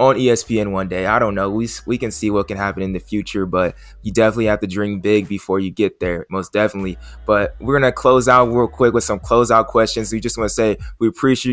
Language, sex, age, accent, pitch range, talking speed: English, male, 20-39, American, 100-120 Hz, 245 wpm